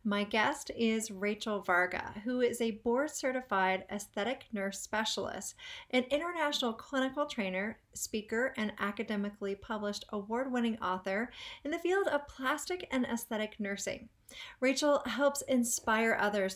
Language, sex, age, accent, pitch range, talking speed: English, female, 40-59, American, 205-270 Hz, 125 wpm